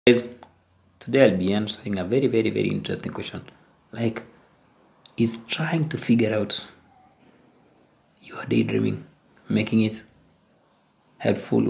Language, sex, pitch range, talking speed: English, male, 100-125 Hz, 115 wpm